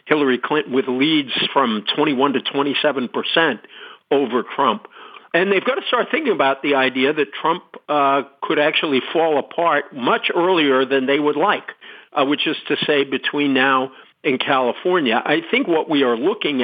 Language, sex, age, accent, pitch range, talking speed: English, male, 50-69, American, 140-225 Hz, 175 wpm